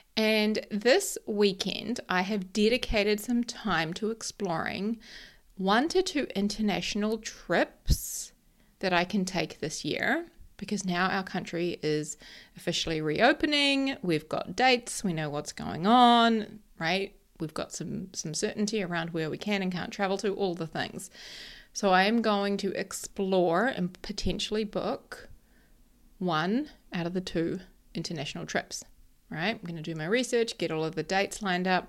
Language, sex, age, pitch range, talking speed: English, female, 30-49, 180-220 Hz, 155 wpm